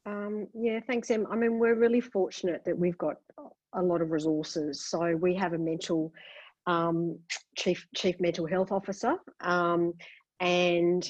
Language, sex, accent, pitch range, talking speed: English, female, Australian, 165-190 Hz, 155 wpm